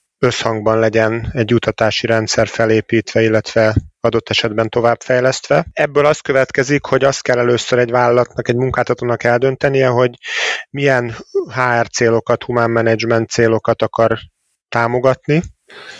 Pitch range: 115-125 Hz